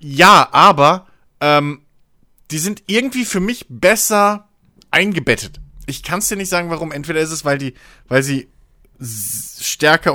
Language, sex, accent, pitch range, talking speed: German, male, German, 130-195 Hz, 155 wpm